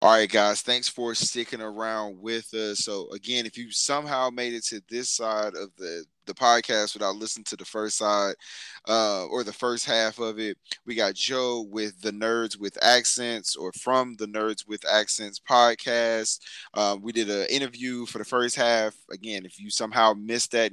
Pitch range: 105-120 Hz